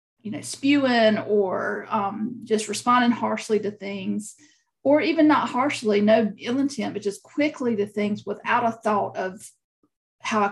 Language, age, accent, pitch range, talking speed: English, 40-59, American, 210-280 Hz, 160 wpm